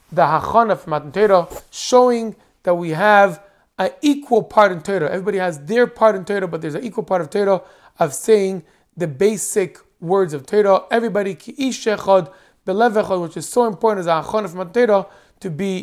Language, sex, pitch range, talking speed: English, male, 175-215 Hz, 170 wpm